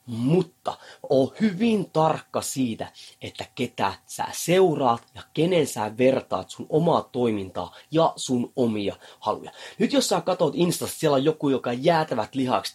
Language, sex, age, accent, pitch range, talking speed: Finnish, male, 30-49, native, 125-180 Hz, 145 wpm